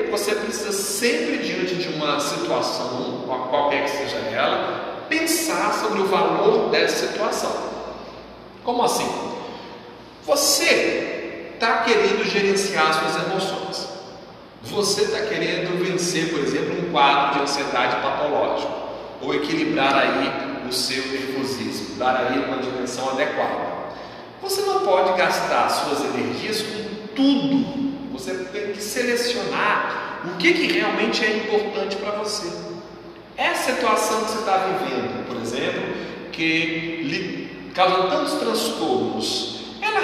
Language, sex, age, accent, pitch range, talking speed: Portuguese, male, 40-59, Brazilian, 155-230 Hz, 120 wpm